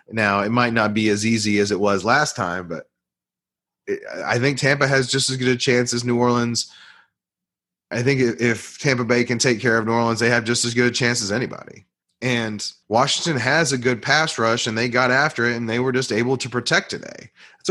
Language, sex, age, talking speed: English, male, 30-49, 225 wpm